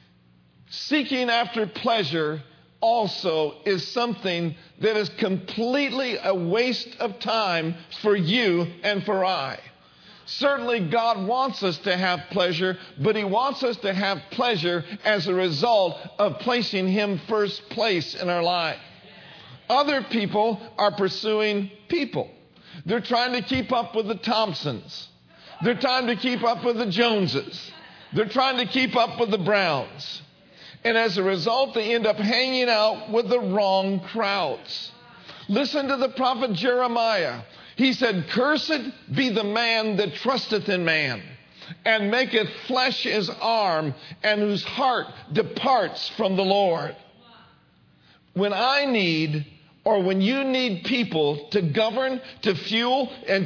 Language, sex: English, male